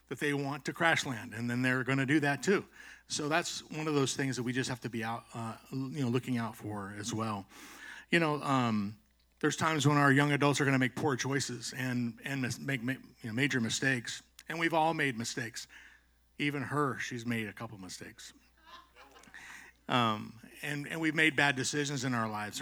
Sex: male